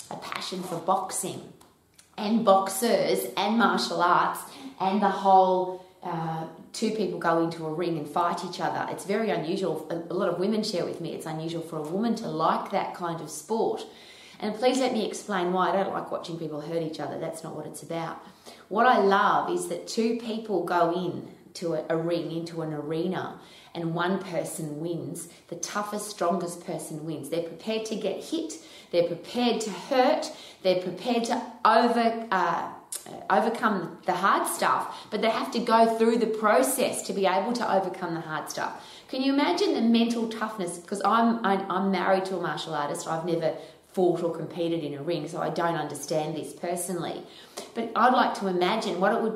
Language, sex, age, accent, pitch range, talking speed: English, female, 20-39, Australian, 170-220 Hz, 190 wpm